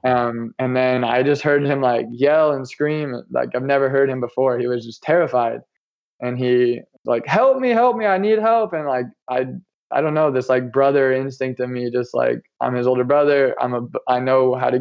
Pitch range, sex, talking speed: 120-135 Hz, male, 225 wpm